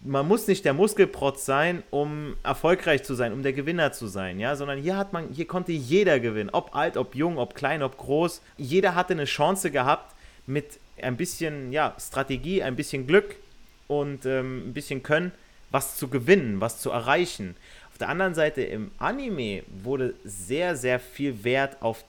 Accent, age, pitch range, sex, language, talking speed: German, 30-49, 125-160 Hz, male, German, 185 wpm